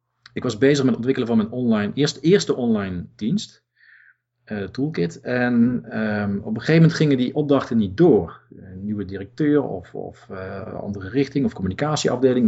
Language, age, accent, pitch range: Dutch, 40-59, Dutch, 110-140 Hz